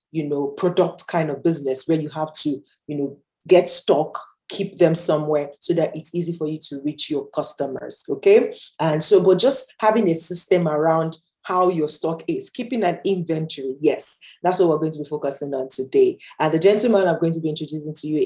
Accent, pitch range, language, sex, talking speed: Nigerian, 150-180 Hz, English, female, 205 wpm